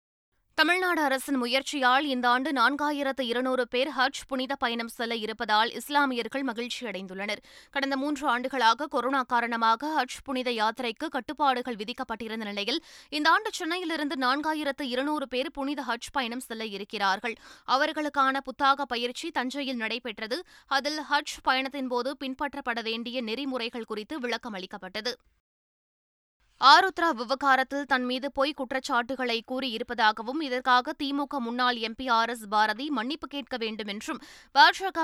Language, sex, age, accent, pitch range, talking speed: Tamil, female, 20-39, native, 230-280 Hz, 115 wpm